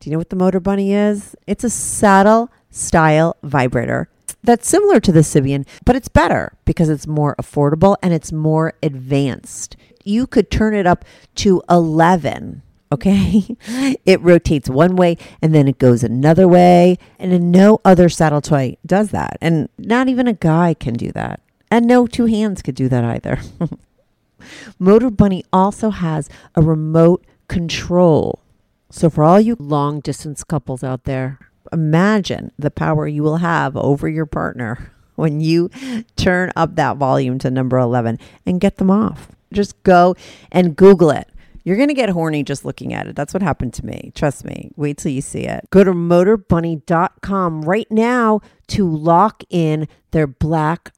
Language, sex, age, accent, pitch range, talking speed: English, female, 40-59, American, 145-195 Hz, 170 wpm